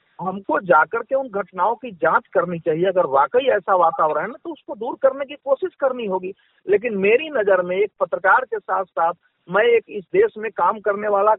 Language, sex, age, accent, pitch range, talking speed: Hindi, male, 50-69, native, 210-305 Hz, 215 wpm